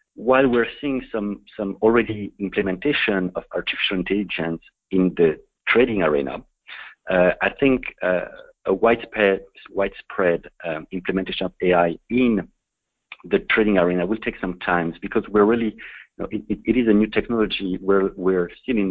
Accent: French